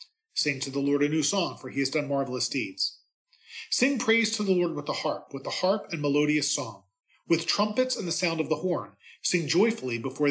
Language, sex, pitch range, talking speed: English, male, 130-195 Hz, 220 wpm